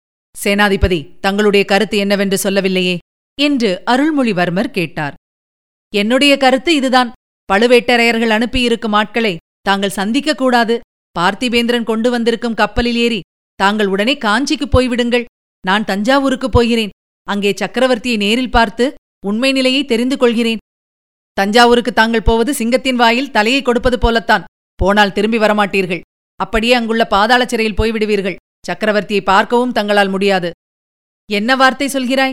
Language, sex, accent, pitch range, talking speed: Tamil, female, native, 200-260 Hz, 110 wpm